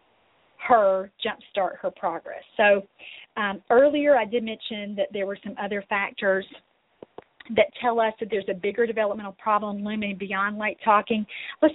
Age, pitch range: 40-59, 200-255 Hz